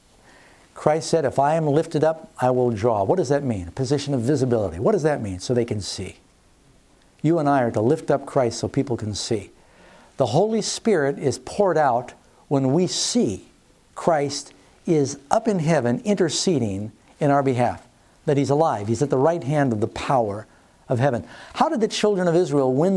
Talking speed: 200 wpm